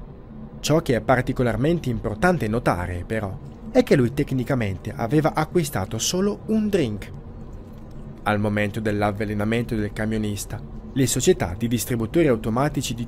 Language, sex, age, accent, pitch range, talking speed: Italian, male, 20-39, native, 105-145 Hz, 125 wpm